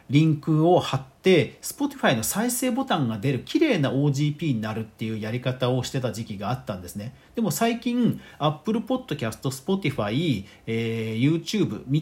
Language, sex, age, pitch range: Japanese, male, 40-59, 125-210 Hz